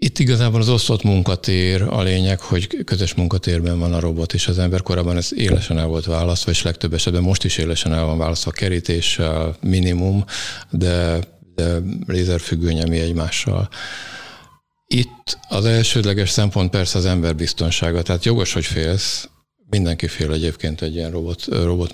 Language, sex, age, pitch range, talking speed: Hungarian, male, 50-69, 85-100 Hz, 155 wpm